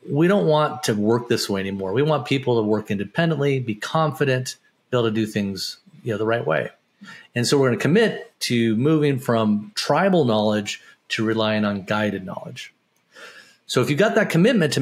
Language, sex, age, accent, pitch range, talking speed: English, male, 40-59, American, 105-140 Hz, 200 wpm